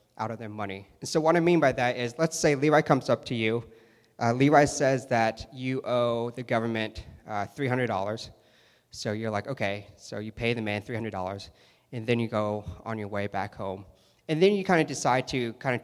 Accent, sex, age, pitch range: American, male, 20-39, 105-135 Hz